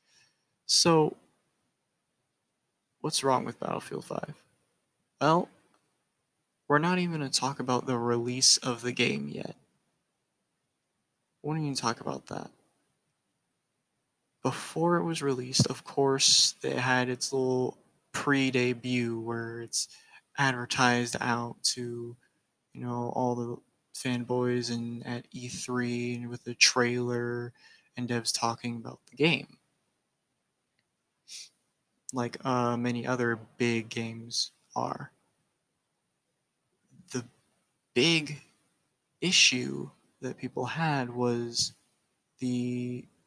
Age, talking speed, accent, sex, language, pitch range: 20-39, 105 wpm, American, male, English, 120-130 Hz